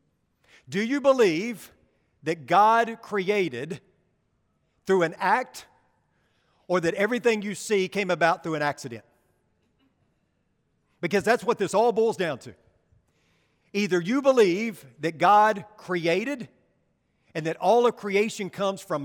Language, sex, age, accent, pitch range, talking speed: English, male, 50-69, American, 160-215 Hz, 125 wpm